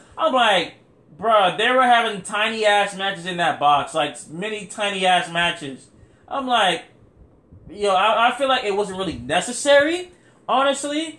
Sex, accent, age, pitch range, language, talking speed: male, American, 20-39, 155-215 Hz, English, 145 wpm